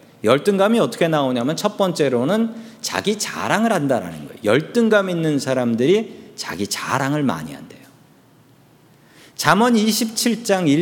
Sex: male